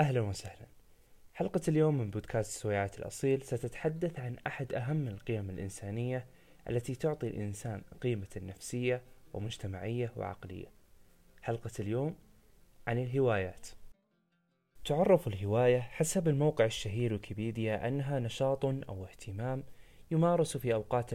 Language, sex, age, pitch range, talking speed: Arabic, male, 20-39, 110-140 Hz, 110 wpm